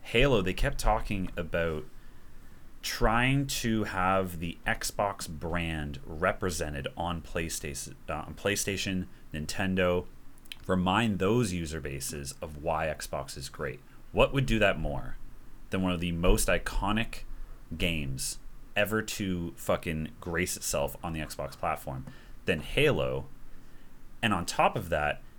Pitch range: 75-100 Hz